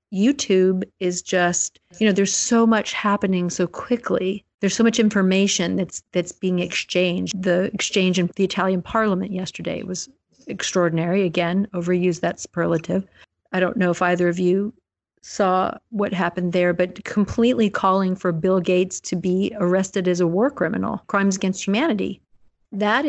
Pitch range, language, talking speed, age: 180-200 Hz, English, 155 wpm, 50-69